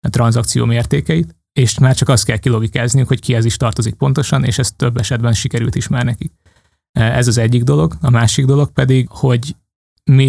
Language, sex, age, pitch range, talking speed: Hungarian, male, 20-39, 115-130 Hz, 180 wpm